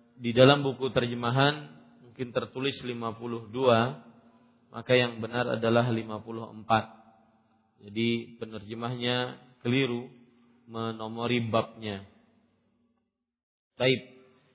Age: 40-59